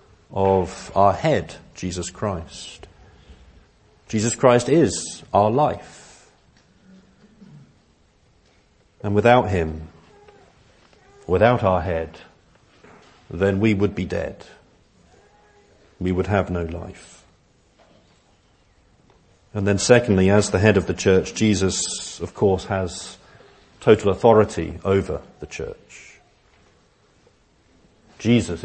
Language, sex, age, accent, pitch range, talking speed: English, male, 50-69, British, 85-105 Hz, 95 wpm